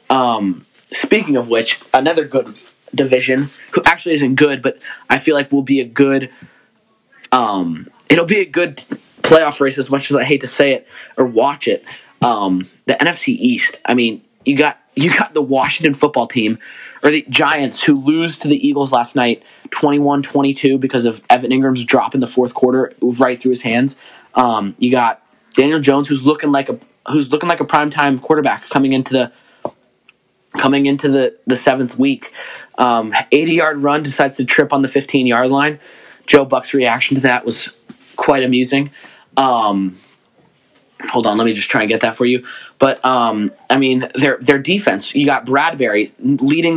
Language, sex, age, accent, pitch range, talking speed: English, male, 20-39, American, 130-155 Hz, 180 wpm